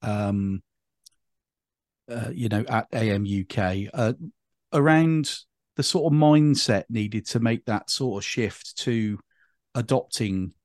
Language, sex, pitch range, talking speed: English, male, 105-135 Hz, 125 wpm